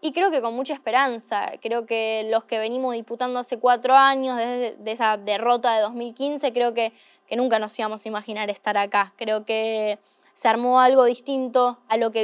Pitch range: 220-250 Hz